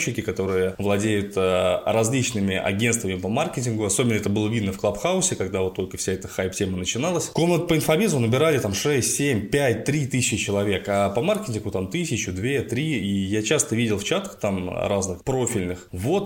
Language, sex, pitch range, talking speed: Russian, male, 95-120 Hz, 180 wpm